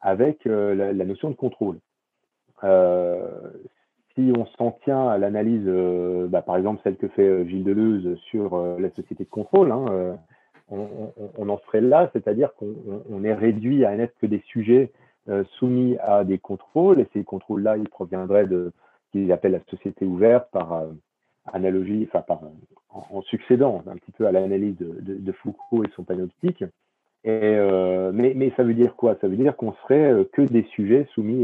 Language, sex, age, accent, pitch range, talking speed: French, male, 40-59, French, 95-120 Hz, 200 wpm